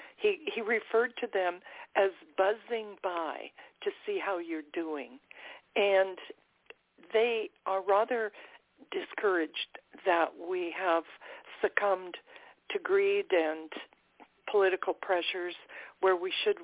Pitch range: 170-240 Hz